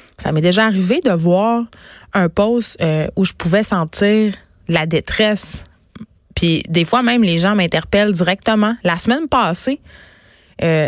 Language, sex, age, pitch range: French, female, 20-39, 170-220 Hz